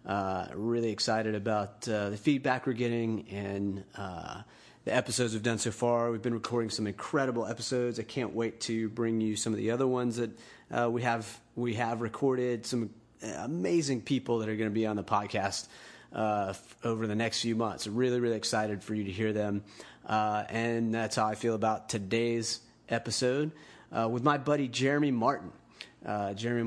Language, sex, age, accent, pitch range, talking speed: English, male, 30-49, American, 105-120 Hz, 190 wpm